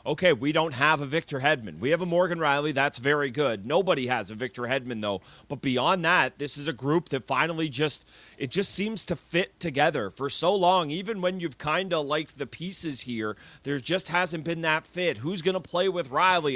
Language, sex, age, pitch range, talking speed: English, male, 30-49, 130-160 Hz, 220 wpm